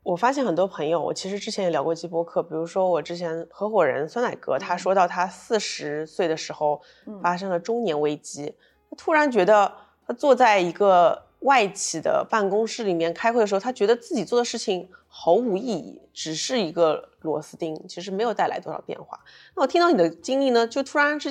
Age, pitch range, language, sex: 20-39, 175-245 Hz, Chinese, female